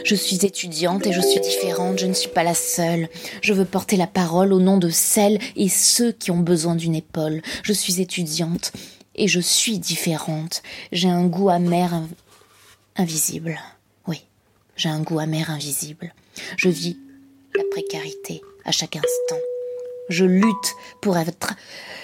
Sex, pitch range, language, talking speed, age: female, 160-200 Hz, French, 160 wpm, 20-39